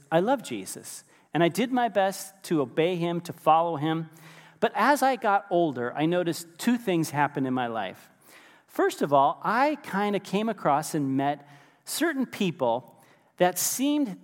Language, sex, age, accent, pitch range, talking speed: English, male, 40-59, American, 155-215 Hz, 175 wpm